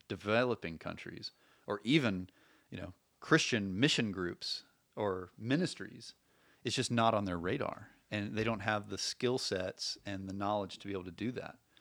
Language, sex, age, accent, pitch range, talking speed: English, male, 30-49, American, 100-120 Hz, 170 wpm